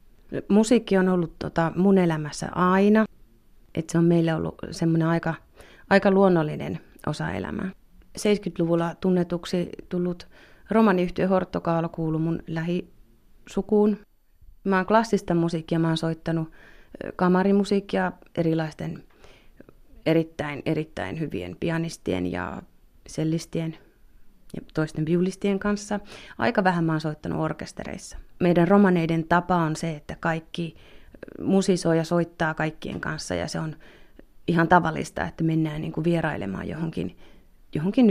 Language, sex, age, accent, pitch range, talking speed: Finnish, female, 30-49, native, 160-185 Hz, 115 wpm